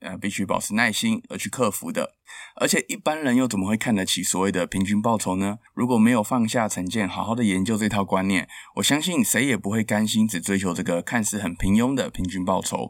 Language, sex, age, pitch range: Chinese, male, 20-39, 95-125 Hz